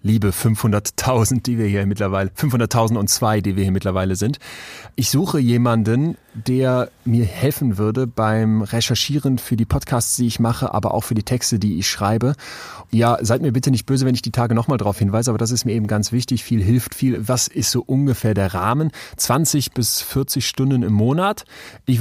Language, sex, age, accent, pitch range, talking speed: German, male, 30-49, German, 110-135 Hz, 200 wpm